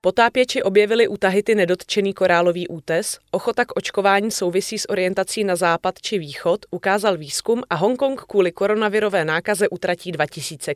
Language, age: Czech, 30-49